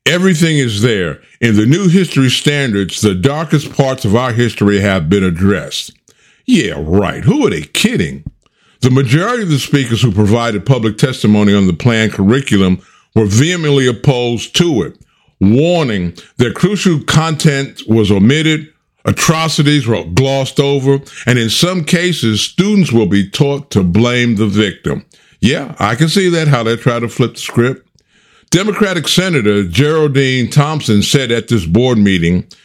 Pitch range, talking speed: 110-150 Hz, 155 wpm